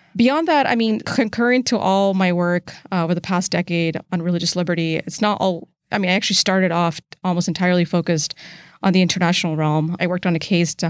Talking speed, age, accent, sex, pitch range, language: 215 wpm, 20-39, American, female, 170-205 Hz, English